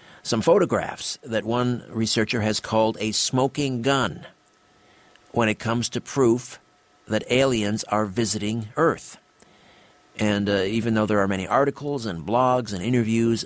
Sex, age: male, 50-69